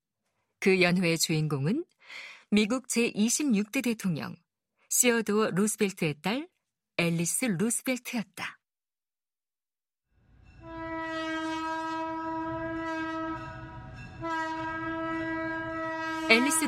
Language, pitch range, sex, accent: Korean, 190-315 Hz, female, native